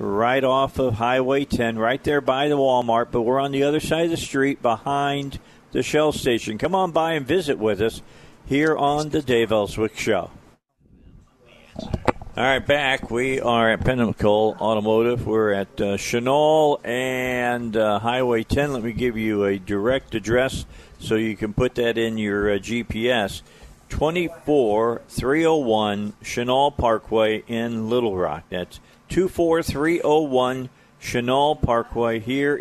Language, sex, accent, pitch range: English, male, American, 105-130 Hz